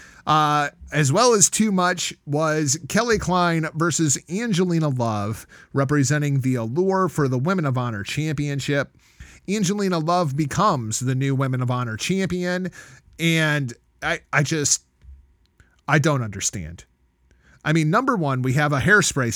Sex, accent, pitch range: male, American, 125-180 Hz